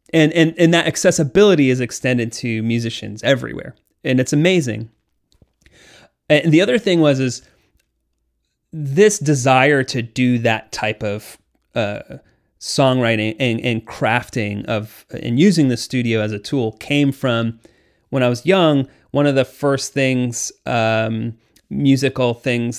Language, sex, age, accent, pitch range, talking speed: English, male, 30-49, American, 110-140 Hz, 140 wpm